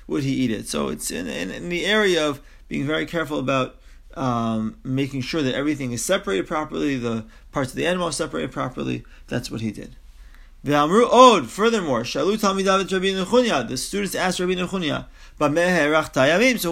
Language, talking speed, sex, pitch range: English, 155 wpm, male, 140-195 Hz